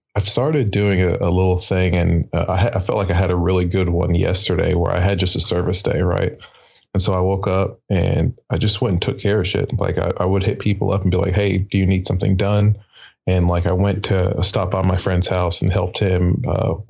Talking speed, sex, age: 255 wpm, male, 20-39